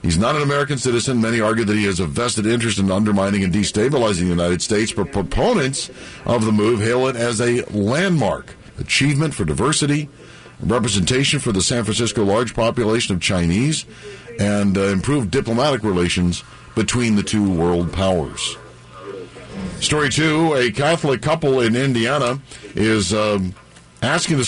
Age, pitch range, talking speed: 50-69, 100-130 Hz, 155 wpm